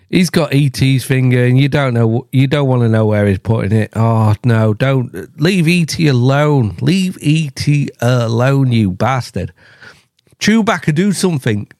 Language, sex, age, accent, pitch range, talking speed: English, male, 40-59, British, 105-135 Hz, 160 wpm